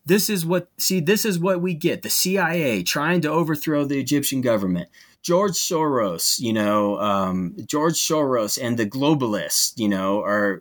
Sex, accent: male, American